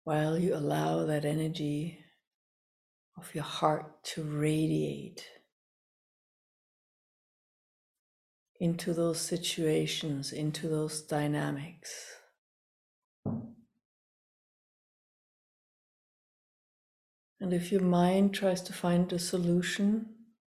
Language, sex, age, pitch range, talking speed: English, female, 60-79, 155-180 Hz, 75 wpm